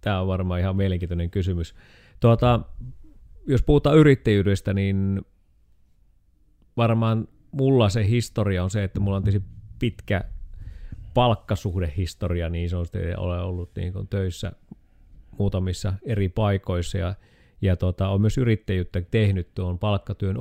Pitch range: 90-105 Hz